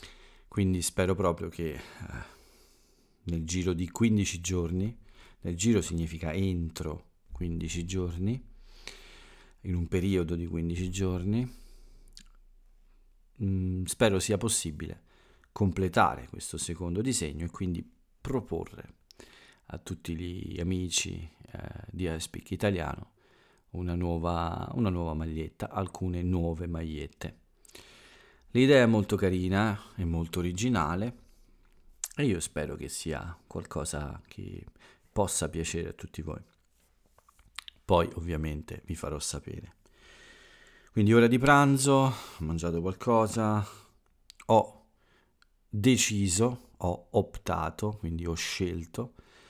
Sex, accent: male, native